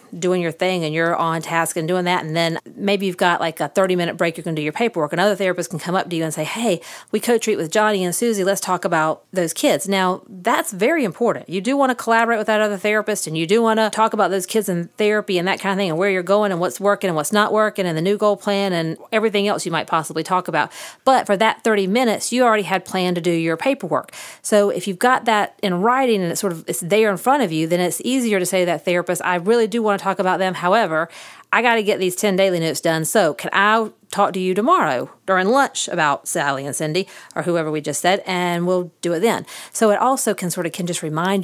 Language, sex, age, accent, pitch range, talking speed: English, female, 40-59, American, 165-210 Hz, 275 wpm